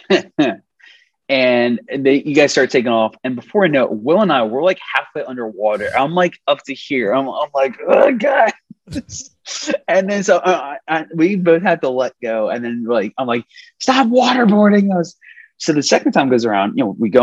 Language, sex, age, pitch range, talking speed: English, male, 20-39, 120-175 Hz, 200 wpm